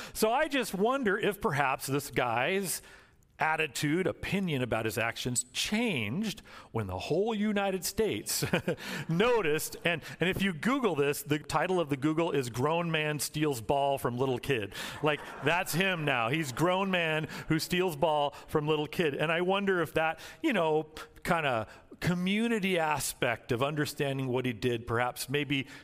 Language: English